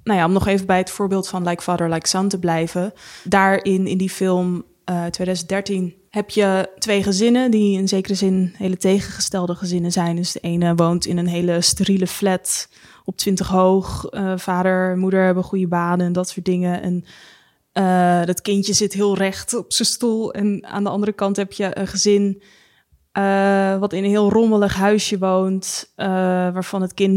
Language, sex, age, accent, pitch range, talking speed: Dutch, female, 20-39, Dutch, 180-195 Hz, 190 wpm